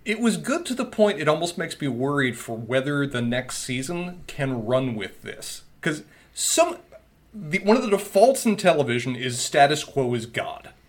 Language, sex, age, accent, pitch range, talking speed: English, male, 30-49, American, 135-200 Hz, 175 wpm